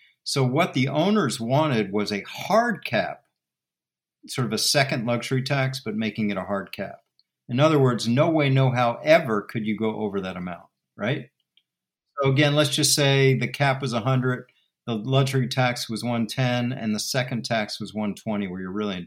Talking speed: 190 wpm